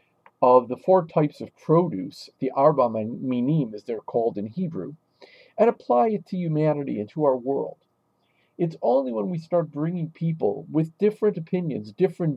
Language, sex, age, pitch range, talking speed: English, male, 50-69, 135-185 Hz, 165 wpm